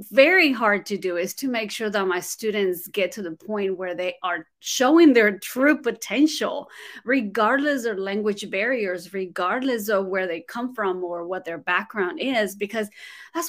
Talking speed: 175 wpm